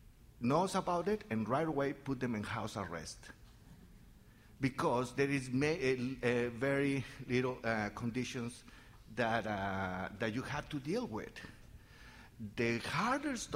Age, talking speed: 50-69, 135 wpm